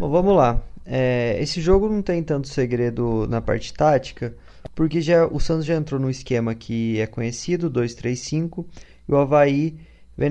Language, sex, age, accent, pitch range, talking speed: Portuguese, male, 20-39, Brazilian, 125-155 Hz, 170 wpm